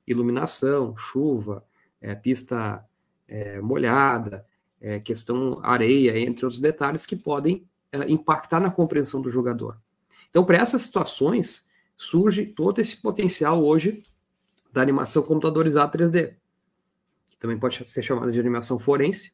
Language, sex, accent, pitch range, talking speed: Portuguese, male, Brazilian, 125-180 Hz, 125 wpm